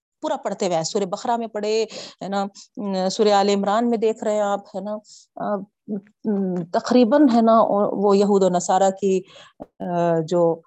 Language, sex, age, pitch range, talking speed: Urdu, female, 50-69, 195-275 Hz, 140 wpm